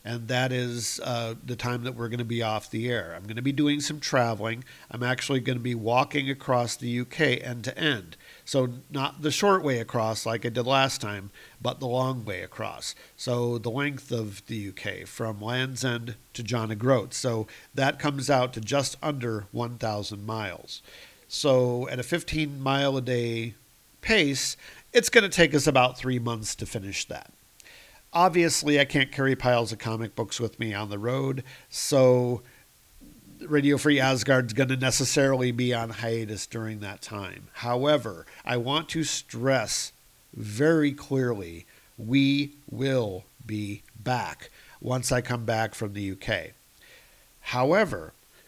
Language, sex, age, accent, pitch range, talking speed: English, male, 50-69, American, 115-135 Hz, 165 wpm